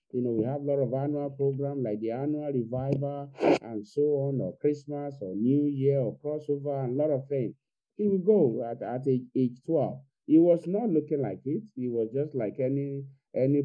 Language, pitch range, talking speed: English, 125-150 Hz, 210 wpm